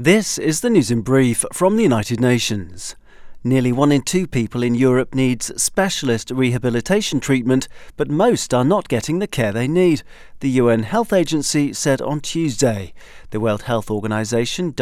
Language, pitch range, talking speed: English, 120-160 Hz, 165 wpm